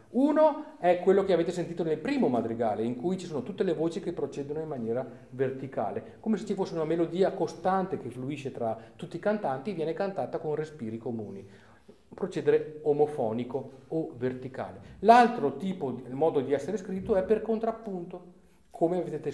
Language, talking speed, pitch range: Italian, 175 wpm, 130-185 Hz